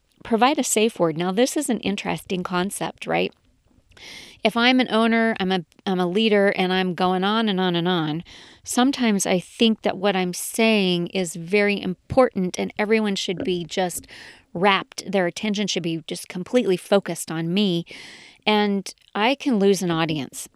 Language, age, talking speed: English, 40-59, 170 wpm